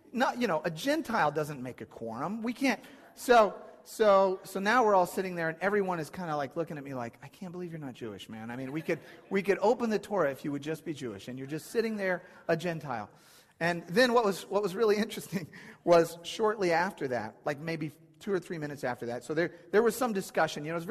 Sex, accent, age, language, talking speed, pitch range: male, American, 40-59, English, 255 wpm, 135-195 Hz